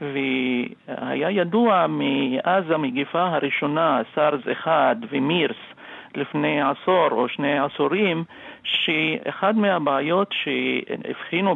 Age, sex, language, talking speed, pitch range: 50-69, male, English, 95 wpm, 140-190 Hz